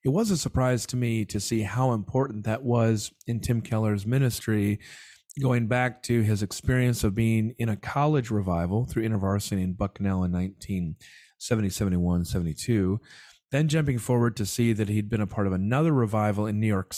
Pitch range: 100-130 Hz